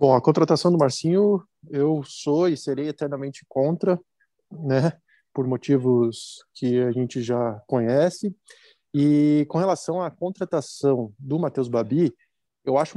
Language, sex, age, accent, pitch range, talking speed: Portuguese, male, 20-39, Brazilian, 135-165 Hz, 135 wpm